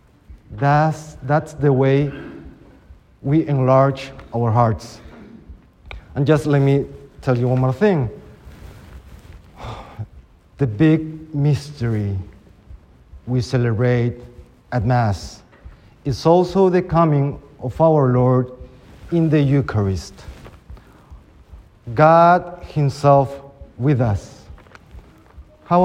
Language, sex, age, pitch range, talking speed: English, male, 40-59, 120-175 Hz, 90 wpm